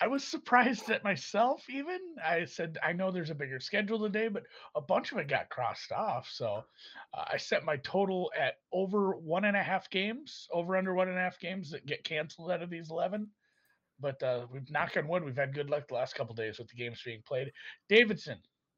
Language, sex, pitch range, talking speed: English, male, 125-195 Hz, 225 wpm